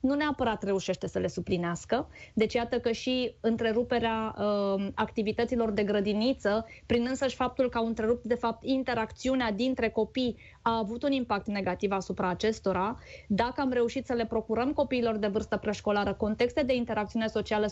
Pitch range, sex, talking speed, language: 215-250 Hz, female, 155 wpm, Romanian